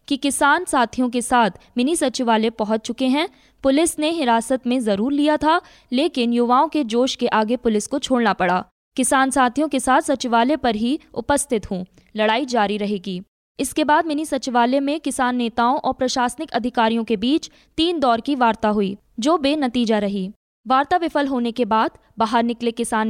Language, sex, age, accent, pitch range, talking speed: Hindi, female, 20-39, native, 230-290 Hz, 175 wpm